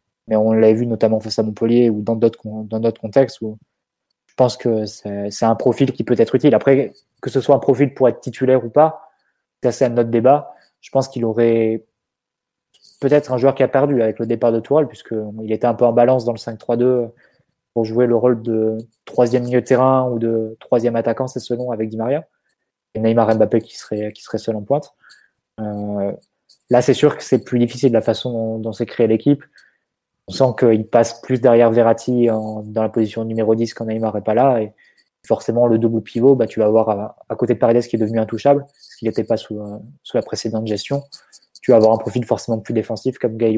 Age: 20-39